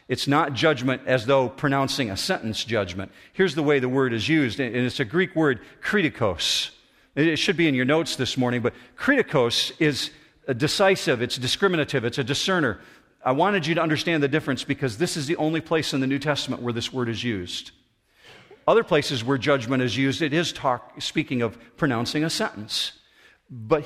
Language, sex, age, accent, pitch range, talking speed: English, male, 50-69, American, 125-160 Hz, 190 wpm